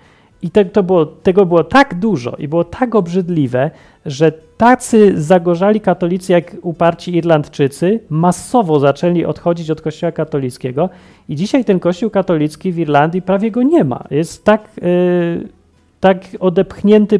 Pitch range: 140-190 Hz